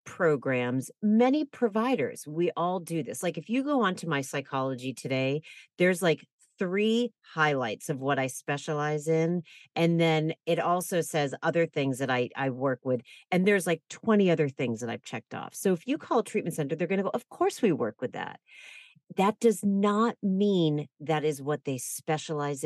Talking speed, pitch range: 195 wpm, 155-225 Hz